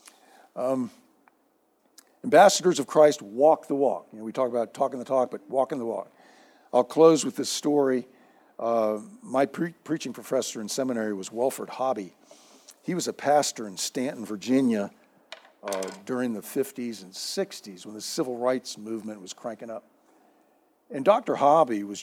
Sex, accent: male, American